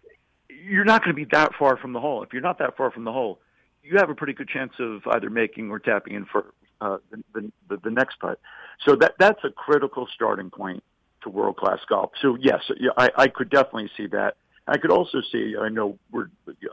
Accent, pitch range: American, 105-140 Hz